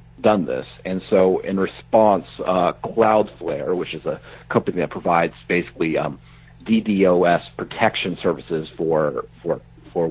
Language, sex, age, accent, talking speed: English, male, 50-69, American, 130 wpm